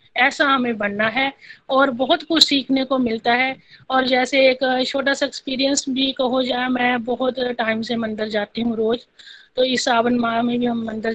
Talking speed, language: 195 wpm, Hindi